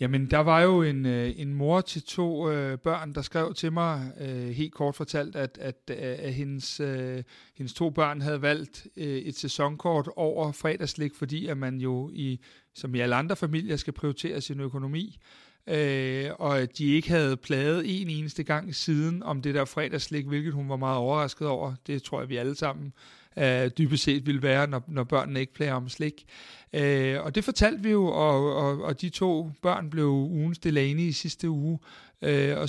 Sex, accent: male, native